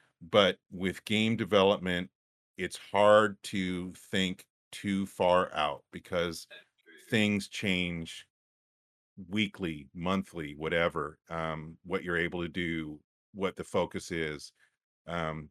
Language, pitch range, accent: English, 80-95 Hz, American